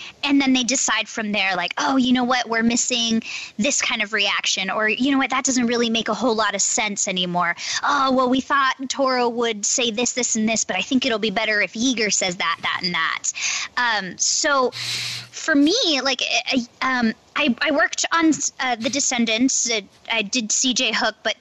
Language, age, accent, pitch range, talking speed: English, 20-39, American, 215-270 Hz, 215 wpm